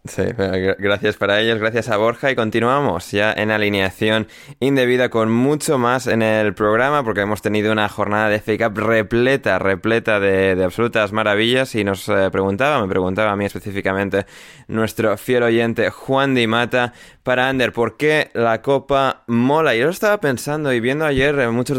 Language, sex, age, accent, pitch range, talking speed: Spanish, male, 20-39, Spanish, 100-130 Hz, 170 wpm